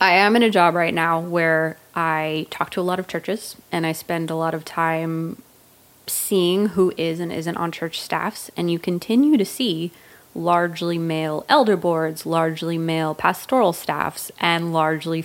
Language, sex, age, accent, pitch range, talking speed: English, female, 20-39, American, 165-195 Hz, 175 wpm